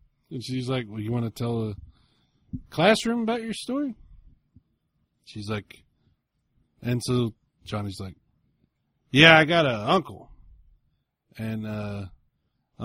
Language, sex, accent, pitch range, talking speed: English, male, American, 110-155 Hz, 120 wpm